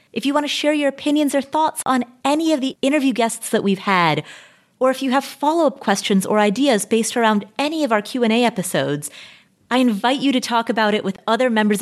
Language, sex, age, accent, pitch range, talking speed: English, female, 30-49, American, 200-260 Hz, 220 wpm